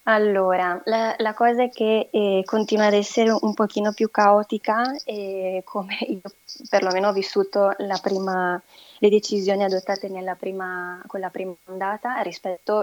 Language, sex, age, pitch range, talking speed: Italian, female, 20-39, 190-220 Hz, 145 wpm